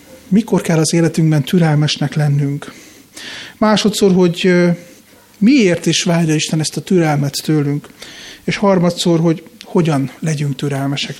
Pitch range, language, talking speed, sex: 160-205 Hz, Hungarian, 120 wpm, male